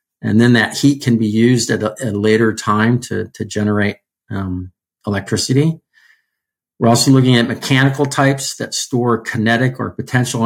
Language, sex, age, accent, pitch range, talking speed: English, male, 50-69, American, 100-125 Hz, 160 wpm